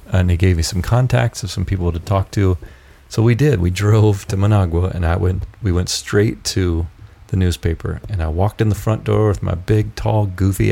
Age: 30-49